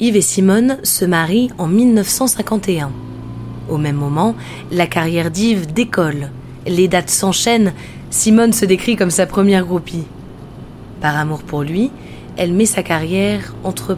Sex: female